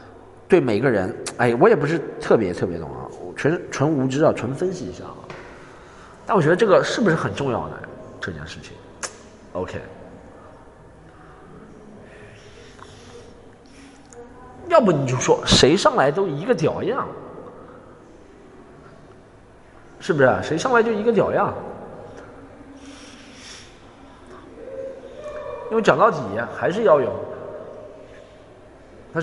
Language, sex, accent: Chinese, male, native